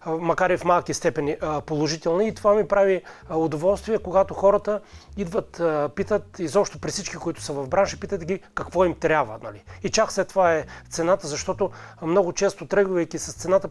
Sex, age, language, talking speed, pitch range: male, 30-49, Bulgarian, 175 wpm, 150-195 Hz